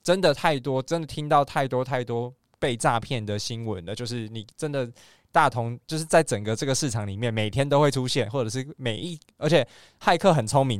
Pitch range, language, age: 115-145 Hz, Chinese, 20-39